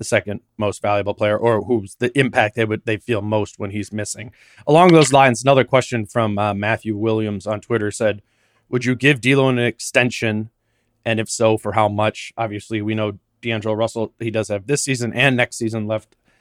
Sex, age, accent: male, 30-49, American